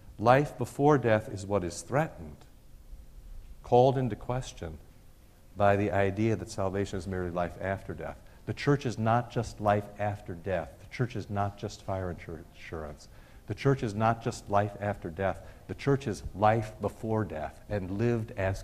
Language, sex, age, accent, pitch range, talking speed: English, male, 60-79, American, 90-110 Hz, 165 wpm